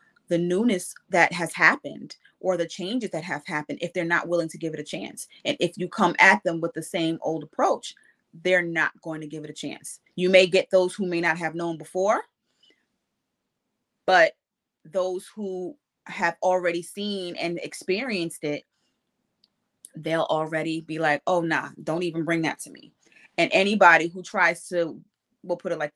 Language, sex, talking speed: English, female, 185 wpm